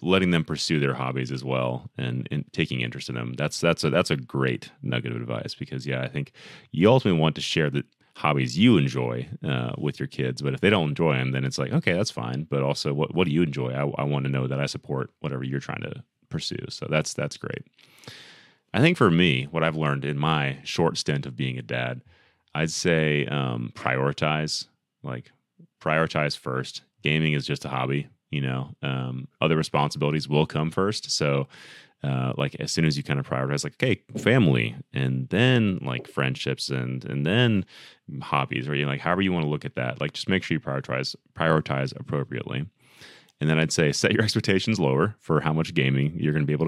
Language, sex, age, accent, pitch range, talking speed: English, male, 30-49, American, 65-75 Hz, 215 wpm